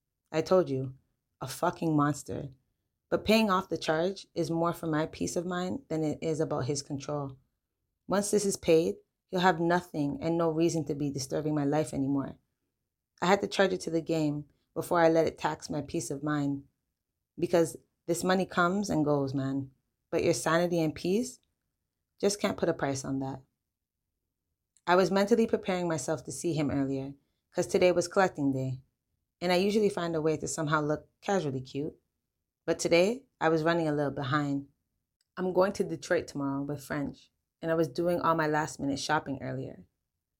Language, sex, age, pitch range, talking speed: English, female, 30-49, 140-175 Hz, 185 wpm